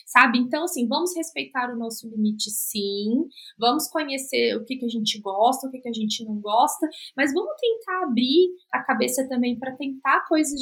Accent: Brazilian